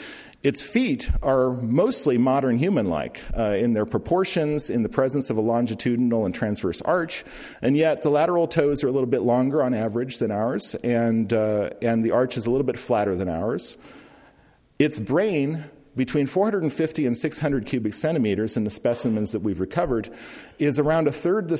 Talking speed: 175 wpm